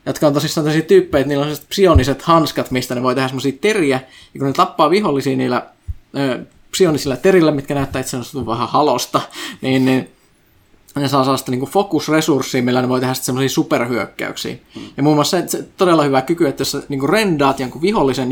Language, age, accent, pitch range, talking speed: Finnish, 20-39, native, 130-155 Hz, 190 wpm